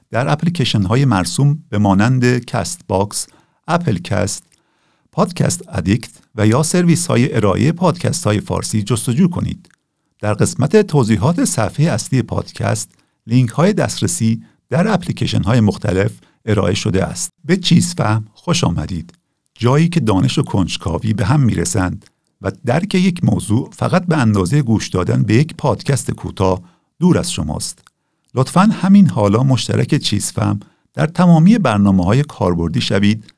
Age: 50-69